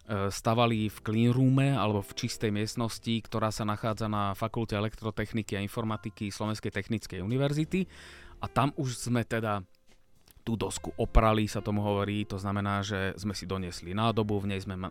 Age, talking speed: 30-49, 160 wpm